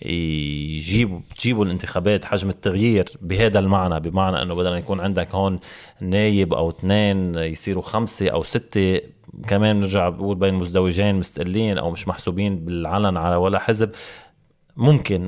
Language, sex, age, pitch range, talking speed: Arabic, male, 20-39, 95-120 Hz, 130 wpm